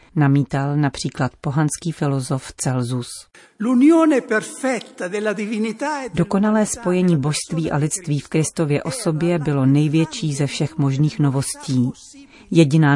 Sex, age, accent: female, 40-59, native